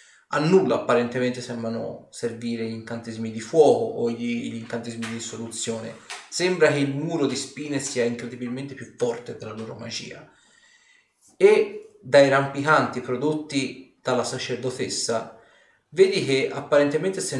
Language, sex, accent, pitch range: Italian, male, native, 115-165 Hz